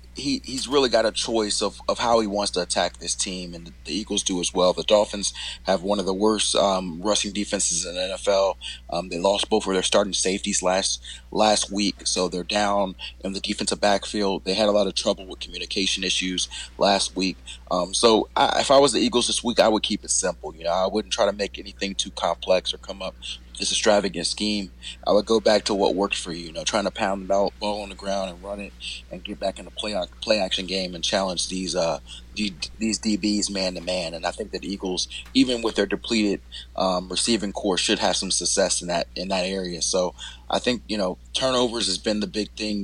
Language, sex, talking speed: English, male, 235 wpm